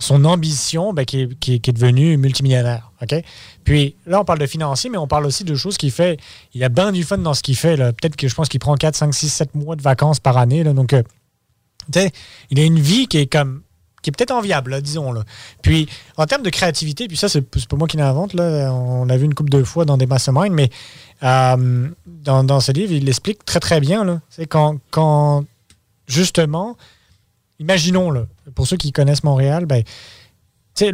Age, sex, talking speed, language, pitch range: 30-49, male, 220 wpm, French, 125-165 Hz